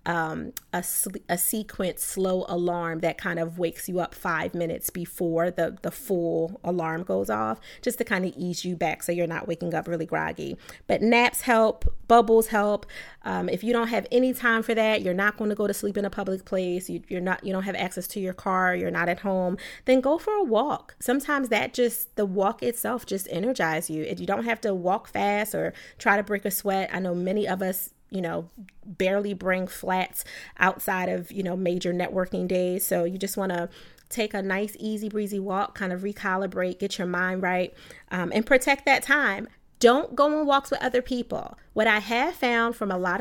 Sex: female